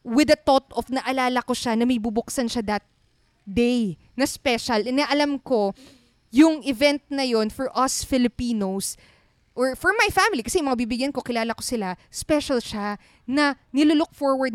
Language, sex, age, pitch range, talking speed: Filipino, female, 20-39, 225-295 Hz, 165 wpm